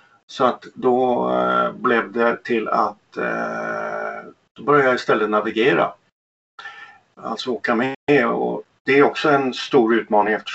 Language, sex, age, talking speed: Swedish, male, 50-69, 125 wpm